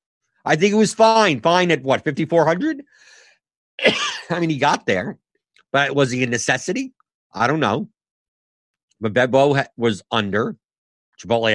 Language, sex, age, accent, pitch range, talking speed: English, male, 50-69, American, 110-155 Hz, 145 wpm